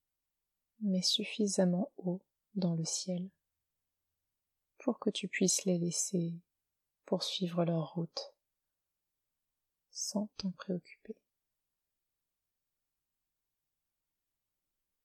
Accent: French